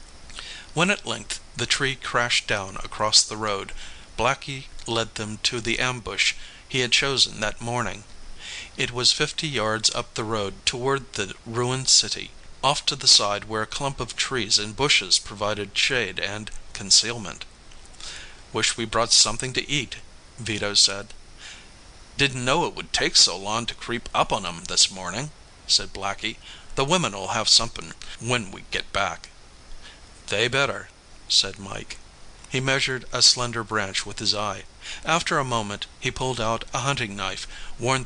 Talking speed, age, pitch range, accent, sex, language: 160 wpm, 50-69, 105-130 Hz, American, male, English